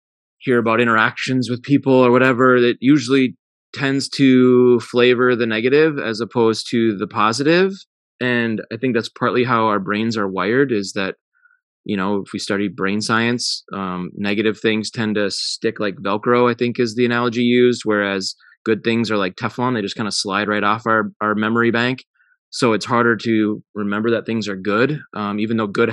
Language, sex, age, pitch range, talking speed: English, male, 20-39, 110-130 Hz, 190 wpm